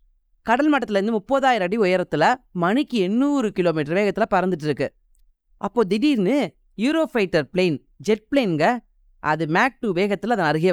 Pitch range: 180-245 Hz